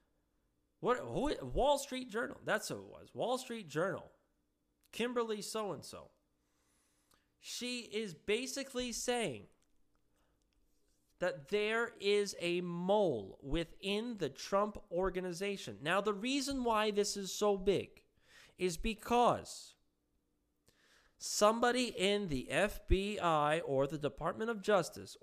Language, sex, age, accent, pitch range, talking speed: English, male, 30-49, American, 160-235 Hz, 110 wpm